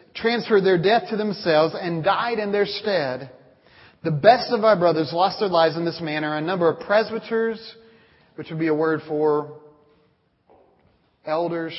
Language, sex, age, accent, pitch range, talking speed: English, male, 30-49, American, 155-195 Hz, 165 wpm